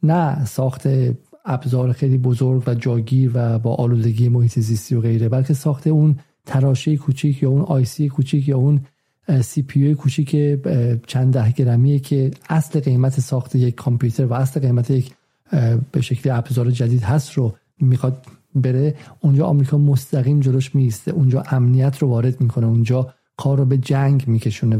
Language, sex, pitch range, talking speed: Persian, male, 125-140 Hz, 155 wpm